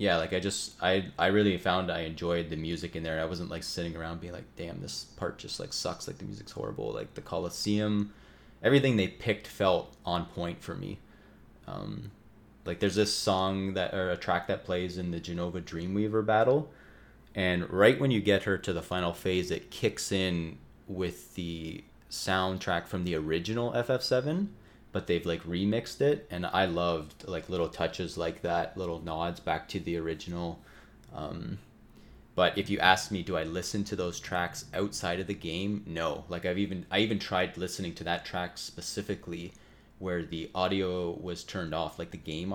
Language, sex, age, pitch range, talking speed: English, male, 30-49, 85-100 Hz, 190 wpm